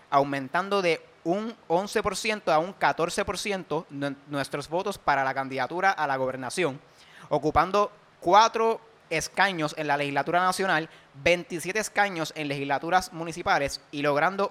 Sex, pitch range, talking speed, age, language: male, 145-185 Hz, 120 wpm, 30-49, Spanish